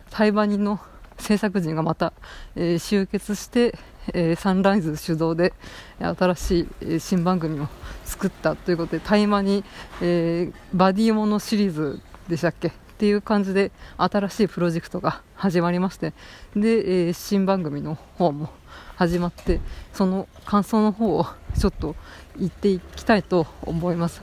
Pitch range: 165-200 Hz